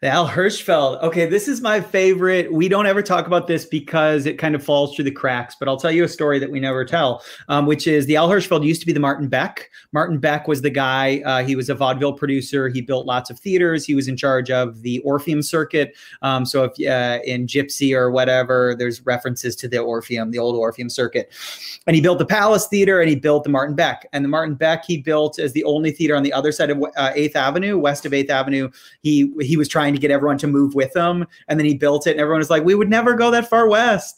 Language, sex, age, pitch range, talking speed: English, male, 30-49, 135-170 Hz, 255 wpm